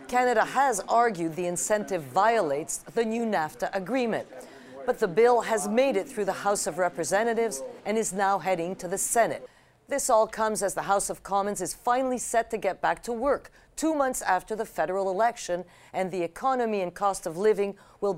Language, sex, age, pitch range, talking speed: English, female, 50-69, 185-230 Hz, 190 wpm